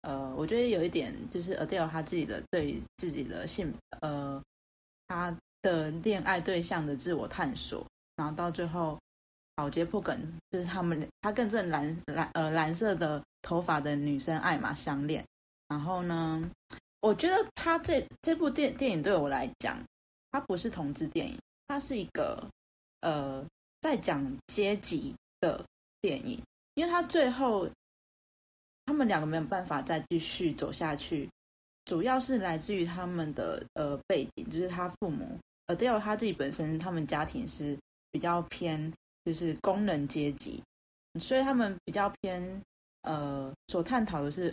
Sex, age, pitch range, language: female, 20-39, 150-195 Hz, Chinese